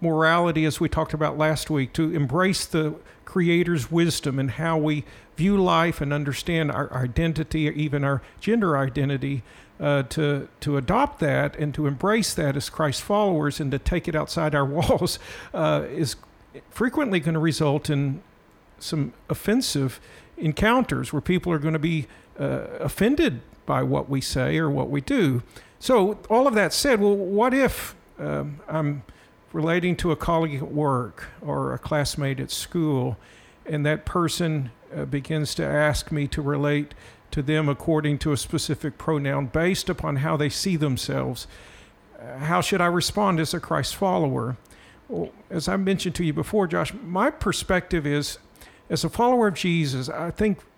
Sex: male